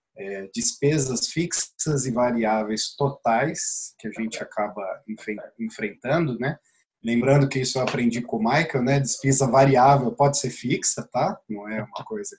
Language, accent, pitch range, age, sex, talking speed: English, Brazilian, 115-140 Hz, 20-39, male, 145 wpm